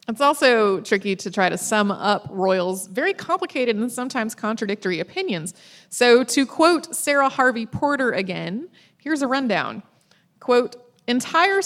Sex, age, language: female, 30-49, English